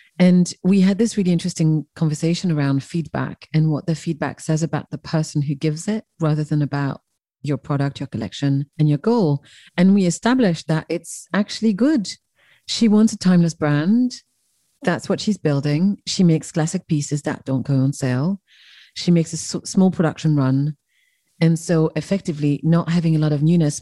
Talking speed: 175 wpm